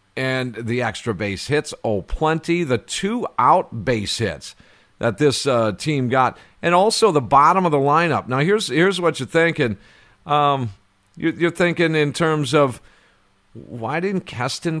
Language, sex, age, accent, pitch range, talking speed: English, male, 50-69, American, 115-155 Hz, 160 wpm